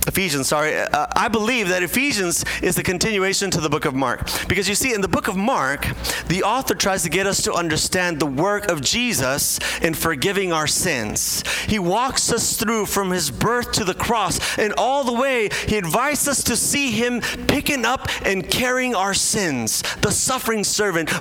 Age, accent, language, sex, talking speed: 30-49, American, English, male, 190 wpm